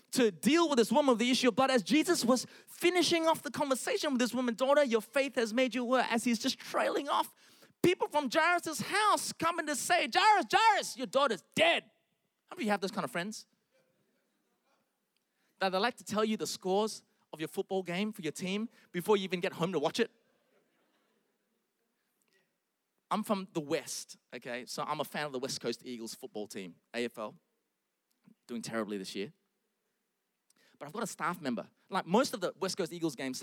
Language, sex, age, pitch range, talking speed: English, male, 20-39, 175-260 Hz, 200 wpm